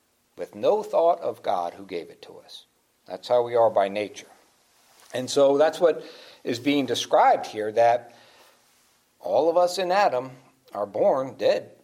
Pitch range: 120-180 Hz